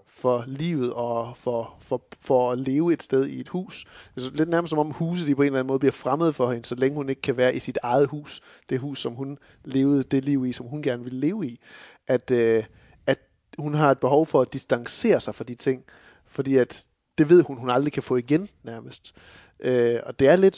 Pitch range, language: 125-145 Hz, Danish